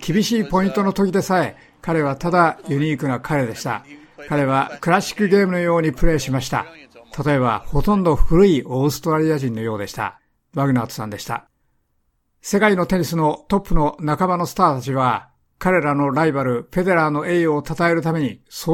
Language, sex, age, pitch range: Japanese, male, 60-79, 140-180 Hz